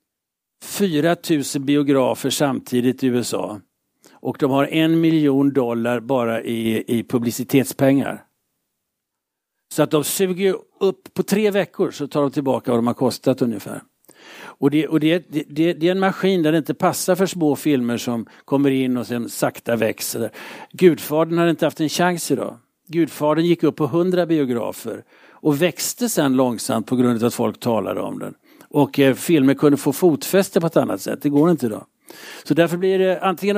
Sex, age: male, 60-79